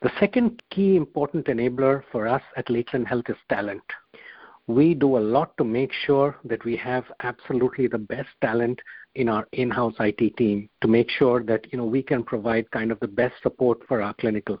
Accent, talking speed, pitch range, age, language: Indian, 195 wpm, 115-140 Hz, 50-69, English